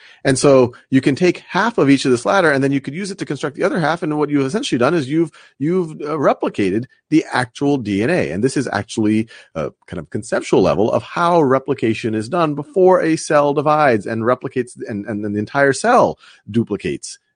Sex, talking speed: male, 210 wpm